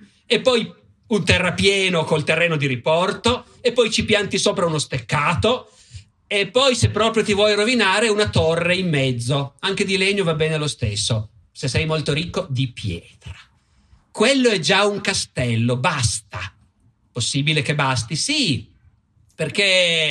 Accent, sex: native, male